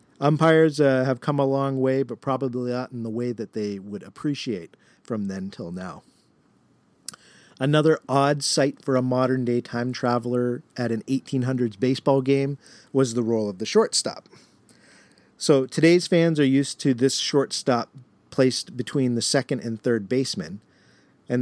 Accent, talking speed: American, 155 wpm